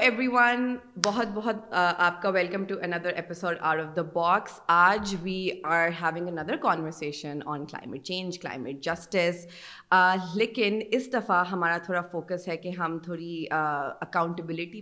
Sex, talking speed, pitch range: female, 145 wpm, 165-190 Hz